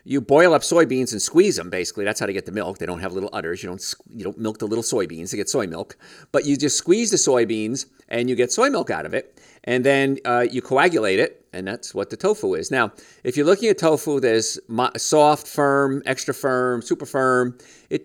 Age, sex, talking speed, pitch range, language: 50-69, male, 235 wpm, 115-140 Hz, English